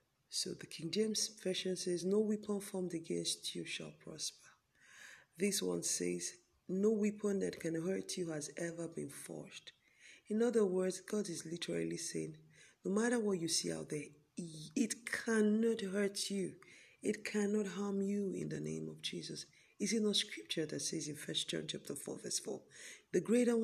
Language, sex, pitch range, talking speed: English, female, 165-215 Hz, 175 wpm